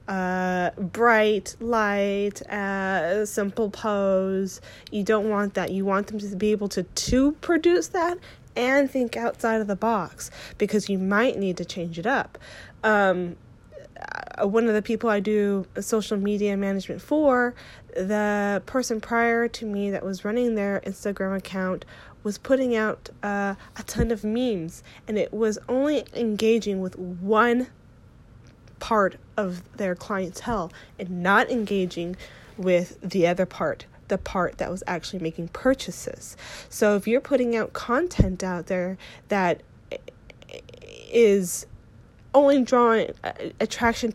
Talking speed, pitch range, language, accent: 140 wpm, 190-230 Hz, English, American